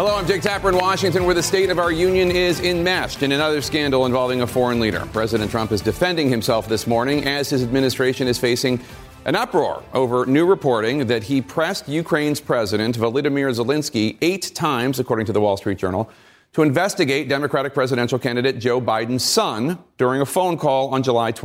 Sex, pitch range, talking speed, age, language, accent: male, 110-140 Hz, 185 wpm, 40-59, English, American